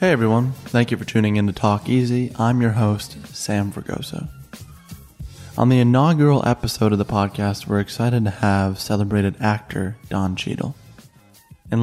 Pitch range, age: 100-115 Hz, 20-39